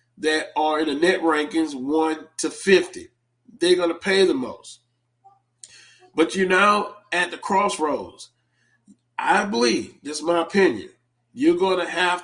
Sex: male